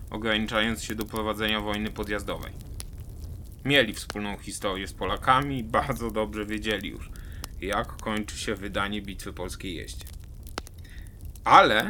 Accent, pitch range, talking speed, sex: native, 90-120 Hz, 120 wpm, male